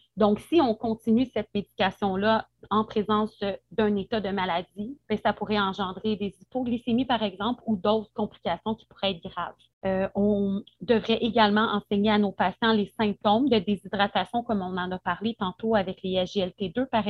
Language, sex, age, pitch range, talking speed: French, female, 30-49, 190-225 Hz, 170 wpm